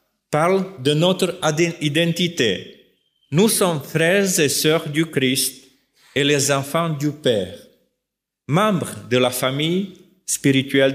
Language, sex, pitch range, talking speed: French, male, 120-165 Hz, 115 wpm